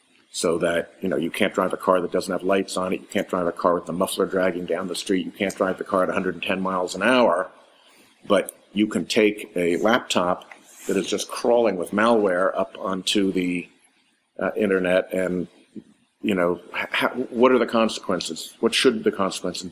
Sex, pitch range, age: male, 90-105 Hz, 50-69